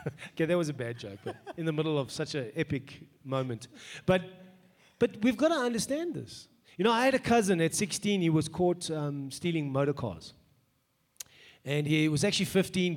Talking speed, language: 190 wpm, English